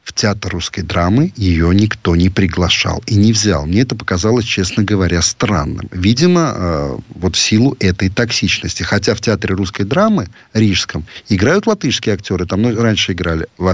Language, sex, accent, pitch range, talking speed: Russian, male, native, 95-120 Hz, 160 wpm